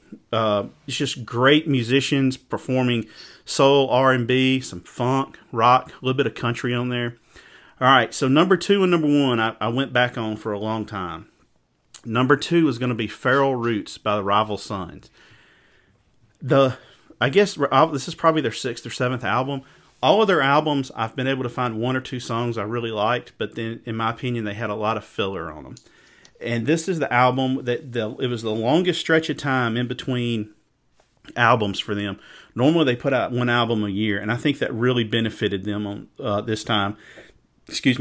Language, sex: English, male